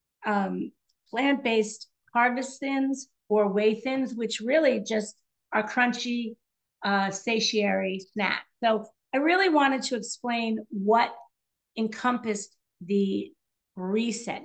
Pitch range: 215-265 Hz